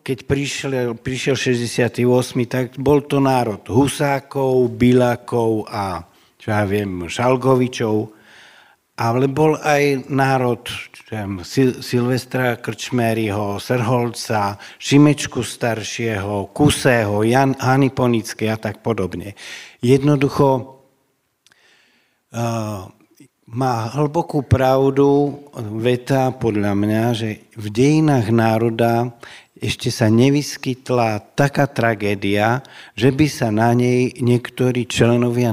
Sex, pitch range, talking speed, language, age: male, 110-135 Hz, 90 wpm, Slovak, 60-79